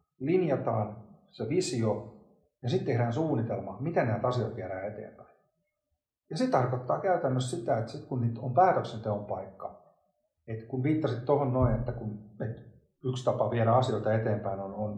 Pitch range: 110-135 Hz